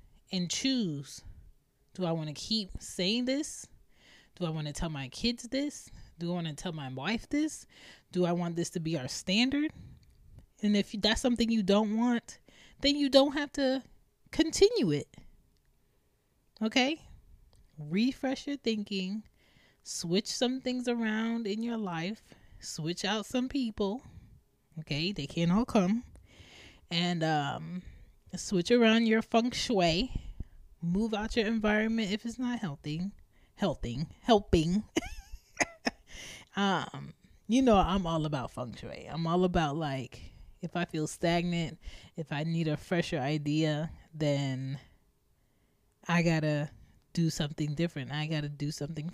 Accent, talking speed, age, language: American, 140 wpm, 20-39, English